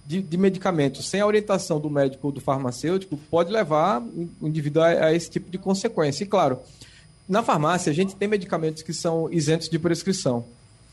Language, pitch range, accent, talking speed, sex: Portuguese, 150-195 Hz, Brazilian, 175 wpm, male